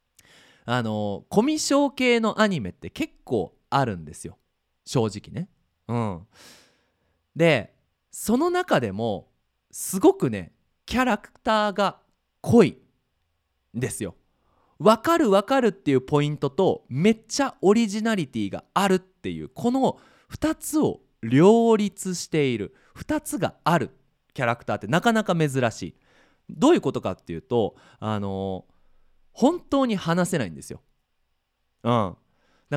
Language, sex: Japanese, male